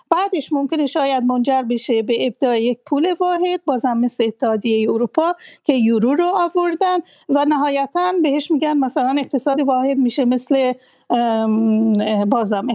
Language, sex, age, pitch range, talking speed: Persian, female, 40-59, 235-285 Hz, 130 wpm